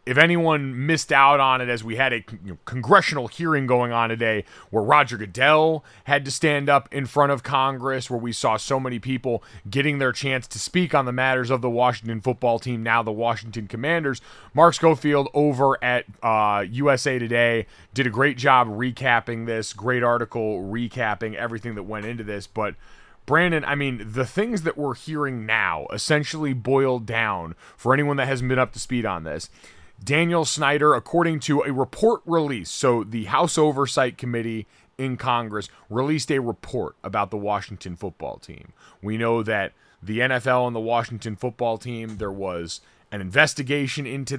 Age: 30-49